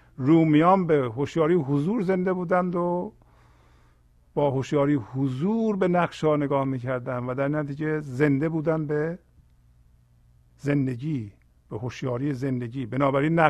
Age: 50-69